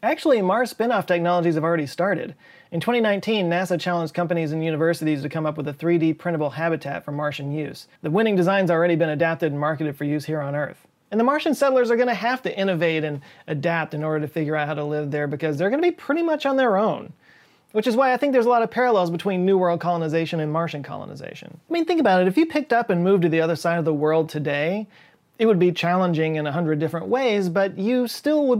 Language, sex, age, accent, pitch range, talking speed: English, male, 30-49, American, 155-215 Hz, 245 wpm